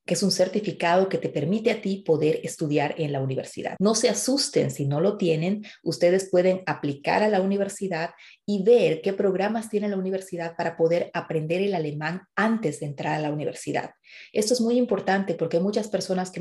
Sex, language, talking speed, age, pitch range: female, Spanish, 200 wpm, 30-49, 160-195 Hz